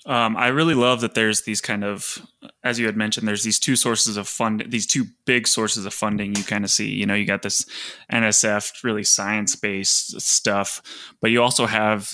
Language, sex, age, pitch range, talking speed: English, male, 20-39, 105-125 Hz, 210 wpm